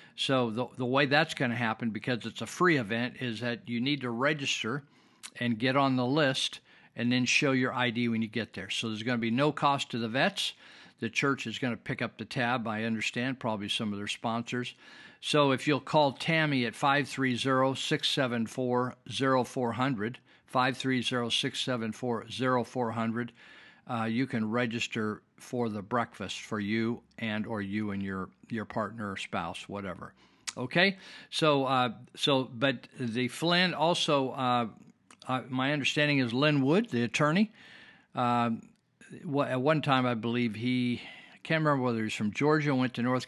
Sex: male